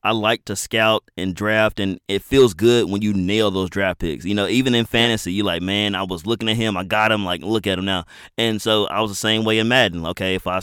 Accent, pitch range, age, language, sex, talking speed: American, 95-115 Hz, 30-49, English, male, 275 wpm